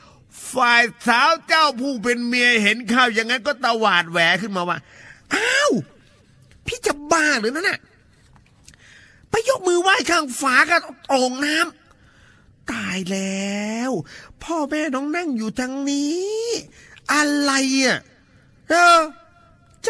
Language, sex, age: Thai, male, 30-49